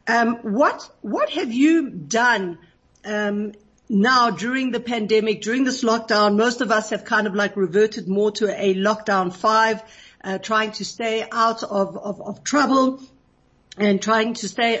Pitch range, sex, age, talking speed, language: 205-255 Hz, female, 50-69, 160 wpm, English